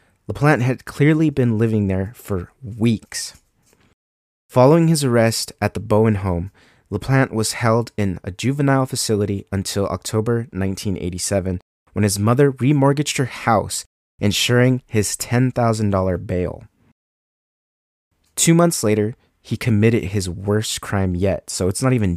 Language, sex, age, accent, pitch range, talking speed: English, male, 30-49, American, 95-120 Hz, 135 wpm